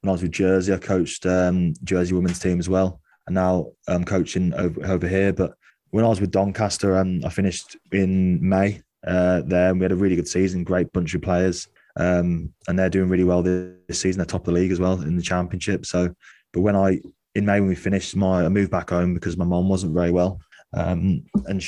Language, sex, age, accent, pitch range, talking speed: English, male, 20-39, British, 90-95 Hz, 235 wpm